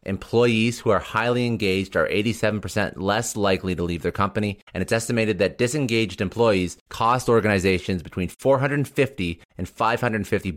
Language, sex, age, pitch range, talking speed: English, male, 30-49, 90-115 Hz, 140 wpm